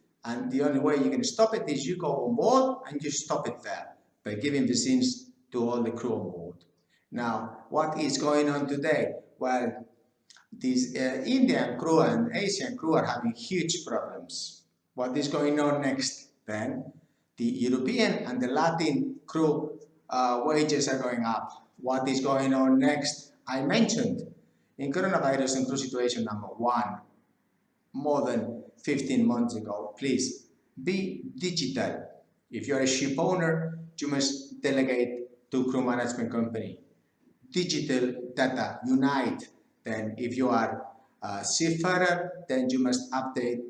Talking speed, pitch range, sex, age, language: 150 wpm, 120-160 Hz, male, 50-69, English